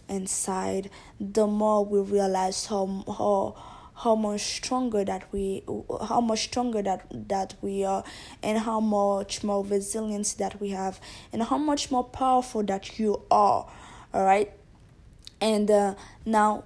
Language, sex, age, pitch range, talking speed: English, female, 20-39, 200-220 Hz, 145 wpm